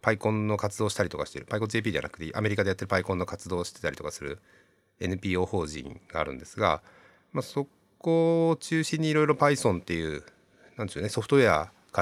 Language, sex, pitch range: Japanese, male, 90-145 Hz